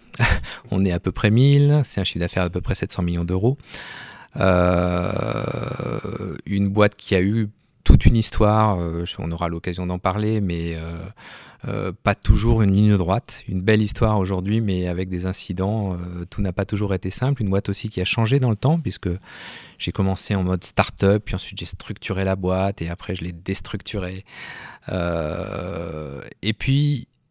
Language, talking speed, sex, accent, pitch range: French, 180 wpm, male, French, 90-105 Hz